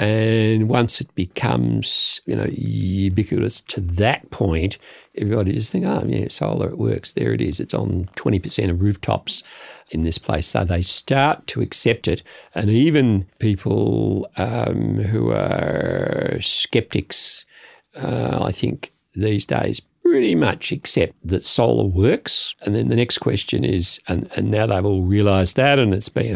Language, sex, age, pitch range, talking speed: English, male, 50-69, 95-110 Hz, 155 wpm